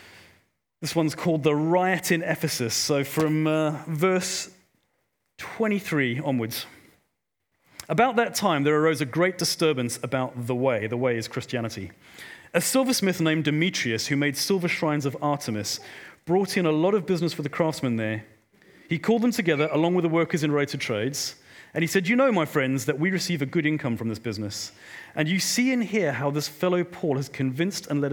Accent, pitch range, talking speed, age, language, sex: British, 135-185 Hz, 190 wpm, 40-59, English, male